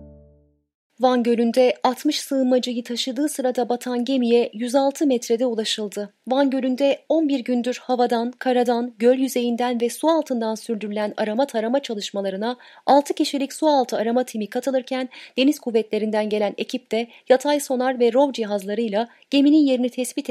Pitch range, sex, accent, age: 215-280 Hz, female, native, 30-49